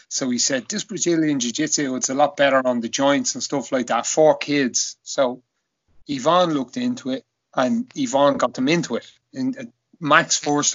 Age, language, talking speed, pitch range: 30-49, English, 185 wpm, 140-215 Hz